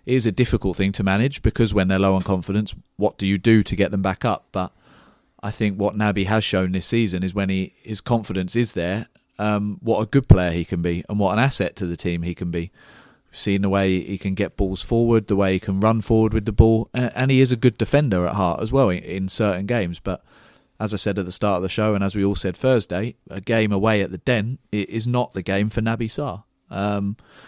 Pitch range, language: 95-110 Hz, English